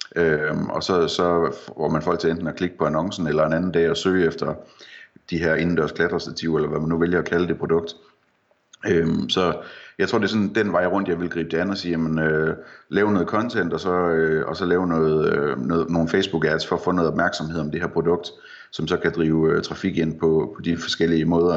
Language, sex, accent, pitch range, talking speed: Danish, male, native, 80-95 Hz, 240 wpm